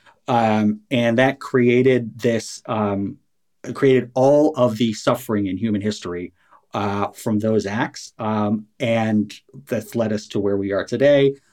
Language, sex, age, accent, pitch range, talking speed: English, male, 30-49, American, 105-130 Hz, 145 wpm